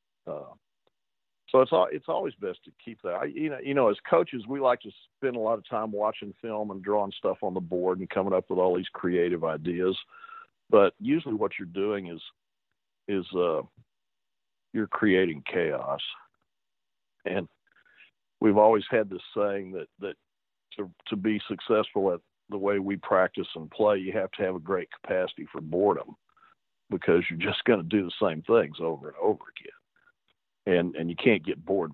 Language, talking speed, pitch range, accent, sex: English, 185 wpm, 90-120 Hz, American, male